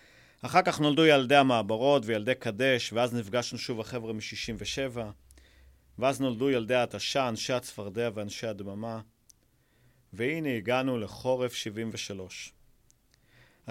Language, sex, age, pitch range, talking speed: Hebrew, male, 40-59, 110-135 Hz, 105 wpm